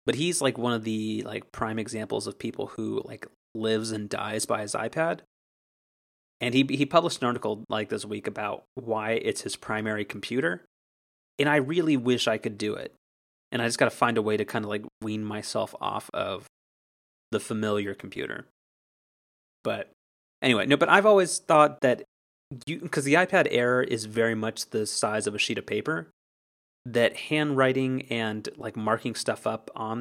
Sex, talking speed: male, 180 wpm